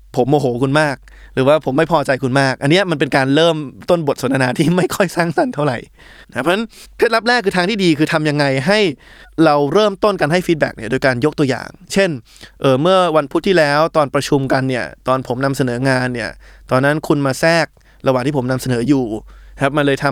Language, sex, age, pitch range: Thai, male, 20-39, 130-170 Hz